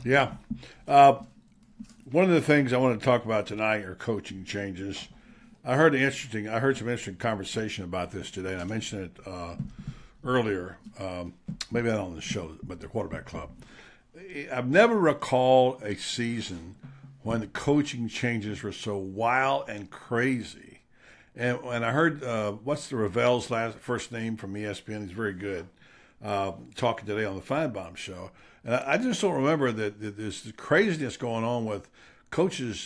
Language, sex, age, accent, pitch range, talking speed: English, male, 60-79, American, 105-135 Hz, 170 wpm